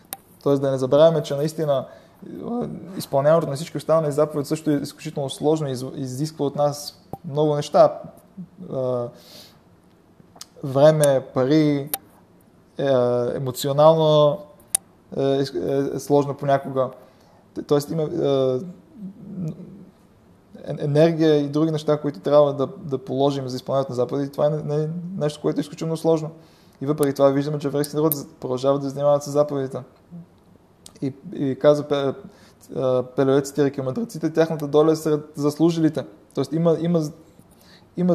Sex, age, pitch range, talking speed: male, 20-39, 140-160 Hz, 120 wpm